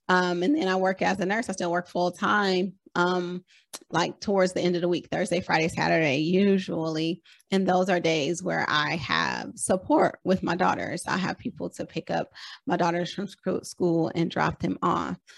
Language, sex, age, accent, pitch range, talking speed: English, female, 30-49, American, 175-250 Hz, 195 wpm